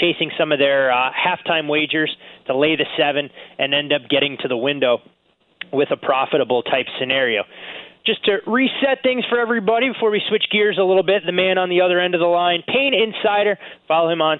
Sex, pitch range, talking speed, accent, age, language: male, 145-185 Hz, 210 wpm, American, 20-39, English